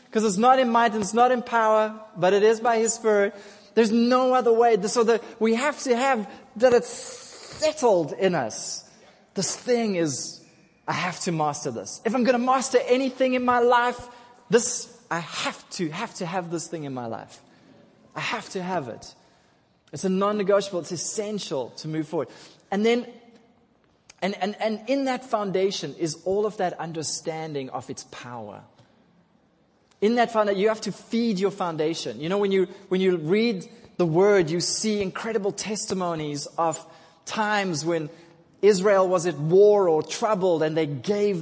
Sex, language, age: male, English, 20-39